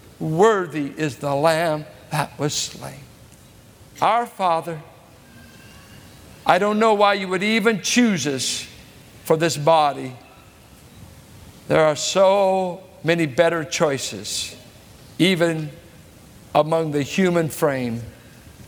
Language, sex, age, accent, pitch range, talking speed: English, male, 50-69, American, 155-220 Hz, 105 wpm